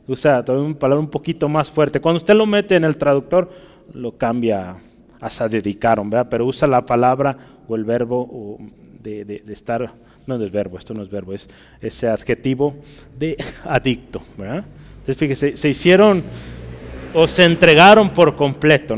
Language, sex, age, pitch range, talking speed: Spanish, male, 30-49, 125-175 Hz, 170 wpm